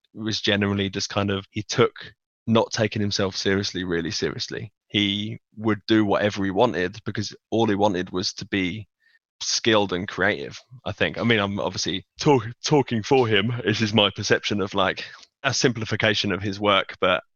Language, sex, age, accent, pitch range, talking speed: English, male, 20-39, British, 100-110 Hz, 175 wpm